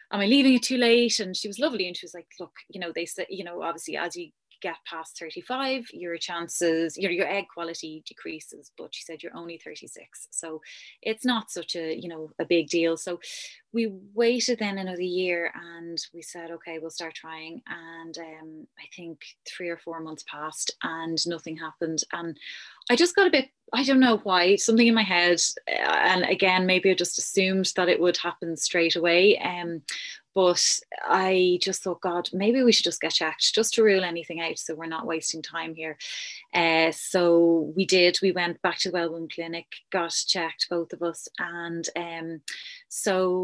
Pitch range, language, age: 165-195 Hz, English, 20-39